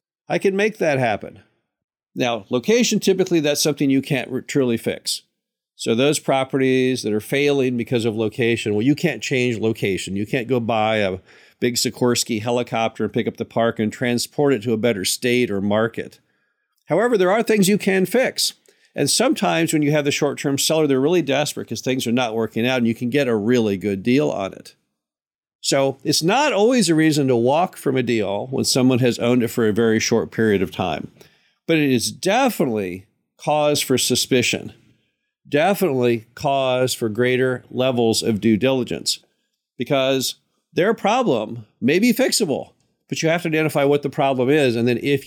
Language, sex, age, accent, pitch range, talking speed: English, male, 50-69, American, 115-145 Hz, 185 wpm